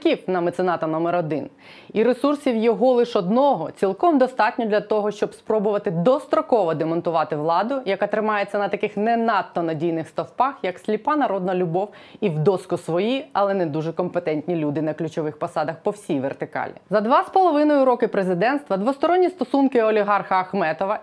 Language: Ukrainian